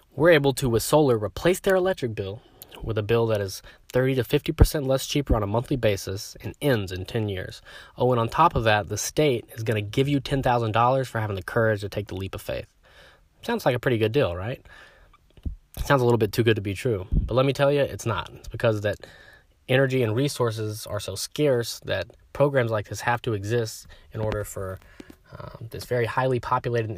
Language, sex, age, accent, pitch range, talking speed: English, male, 20-39, American, 105-130 Hz, 220 wpm